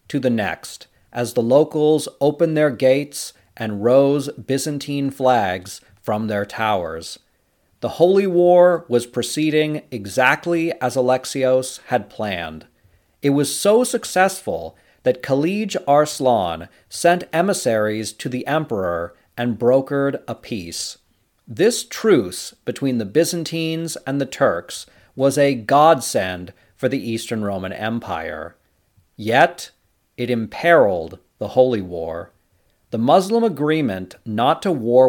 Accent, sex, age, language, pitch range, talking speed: American, male, 40-59, English, 110-150 Hz, 120 wpm